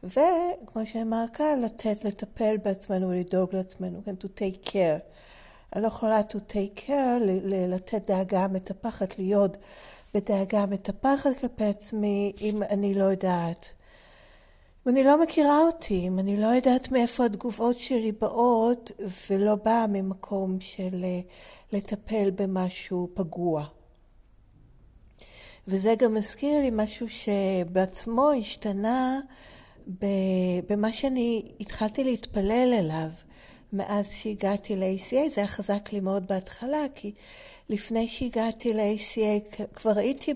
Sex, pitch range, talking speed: female, 195-230 Hz, 80 wpm